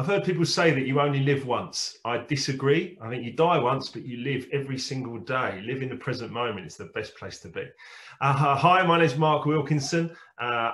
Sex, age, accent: male, 30-49, British